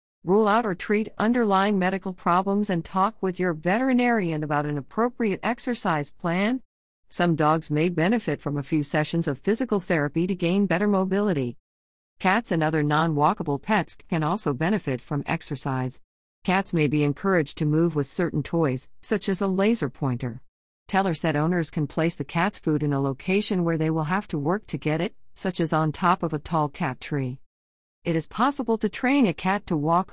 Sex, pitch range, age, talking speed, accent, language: female, 150-195 Hz, 50-69, 185 wpm, American, English